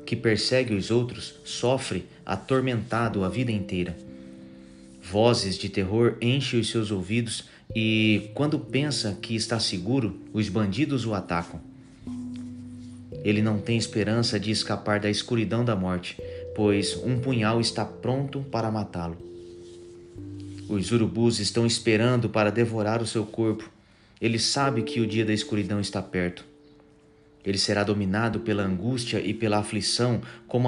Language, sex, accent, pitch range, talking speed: Portuguese, male, Brazilian, 100-120 Hz, 135 wpm